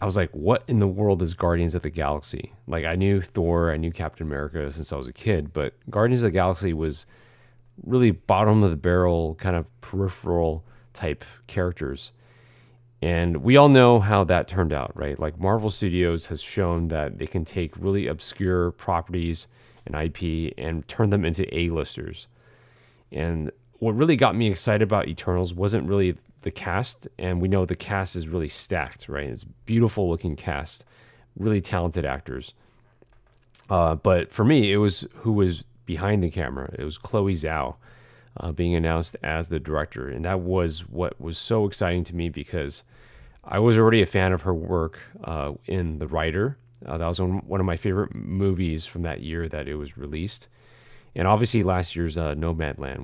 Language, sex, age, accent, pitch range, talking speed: English, male, 30-49, American, 80-110 Hz, 185 wpm